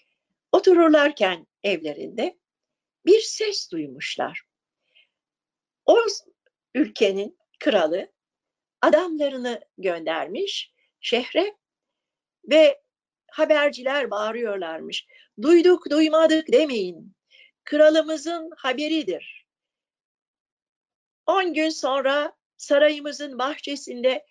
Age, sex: 60-79, female